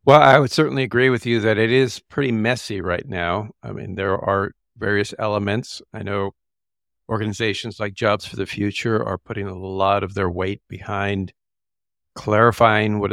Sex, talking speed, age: male, 175 wpm, 50-69